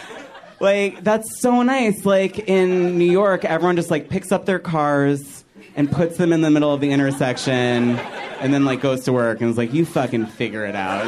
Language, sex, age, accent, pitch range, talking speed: English, male, 30-49, American, 125-160 Hz, 205 wpm